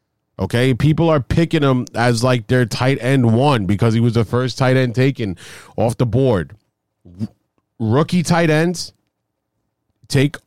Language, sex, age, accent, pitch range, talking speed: English, male, 30-49, American, 125-160 Hz, 150 wpm